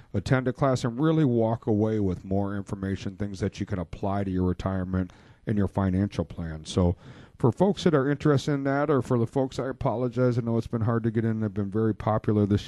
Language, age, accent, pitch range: English, 50-69, American, 100-130 Hz